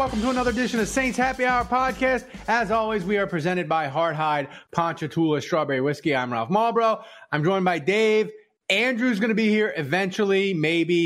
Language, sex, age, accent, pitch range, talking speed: English, male, 30-49, American, 140-205 Hz, 180 wpm